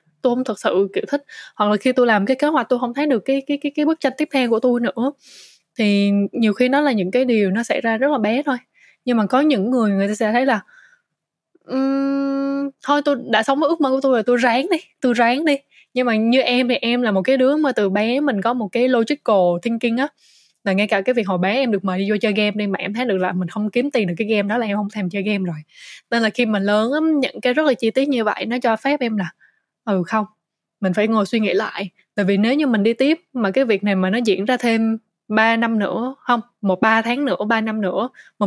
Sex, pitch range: female, 200-260 Hz